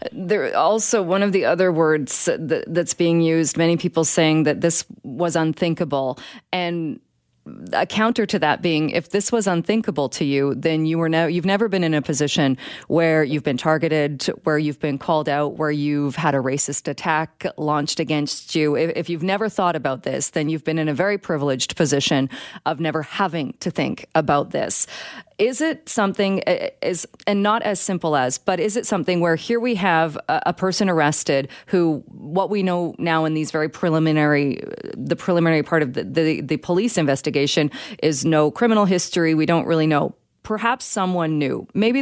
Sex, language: female, English